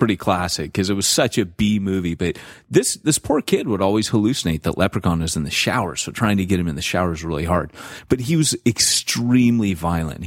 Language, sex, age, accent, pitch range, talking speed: English, male, 30-49, American, 85-105 Hz, 230 wpm